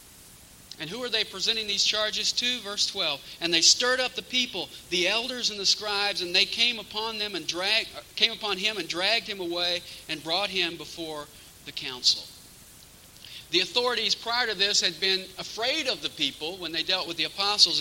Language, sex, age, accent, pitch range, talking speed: English, male, 40-59, American, 170-220 Hz, 180 wpm